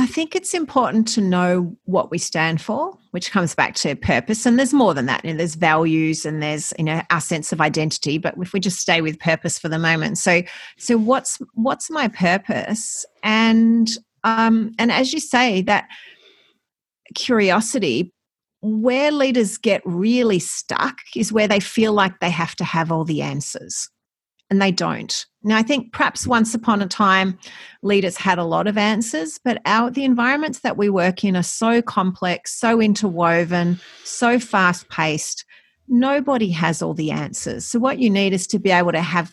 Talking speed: 185 wpm